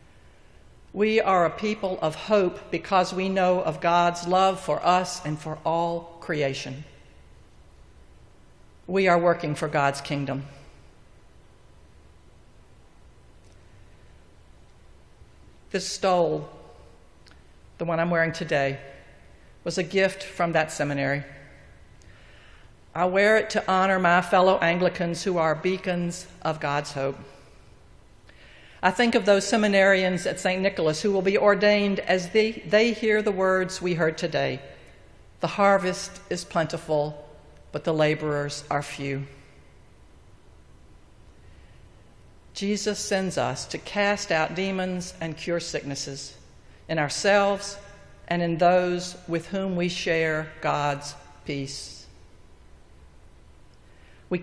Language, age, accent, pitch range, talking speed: English, 60-79, American, 135-185 Hz, 115 wpm